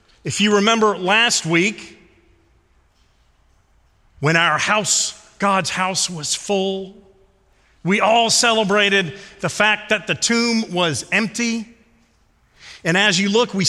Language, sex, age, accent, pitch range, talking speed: English, male, 40-59, American, 160-215 Hz, 120 wpm